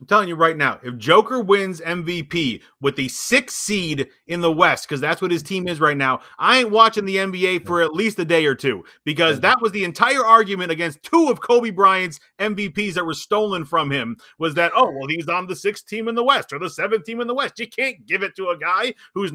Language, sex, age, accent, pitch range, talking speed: English, male, 30-49, American, 155-205 Hz, 250 wpm